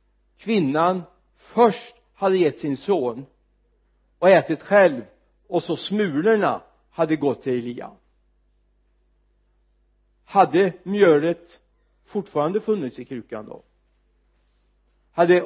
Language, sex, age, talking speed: Swedish, male, 60-79, 95 wpm